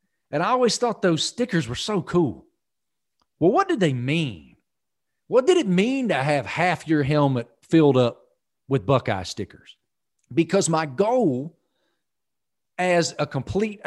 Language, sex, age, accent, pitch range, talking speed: English, male, 40-59, American, 135-195 Hz, 145 wpm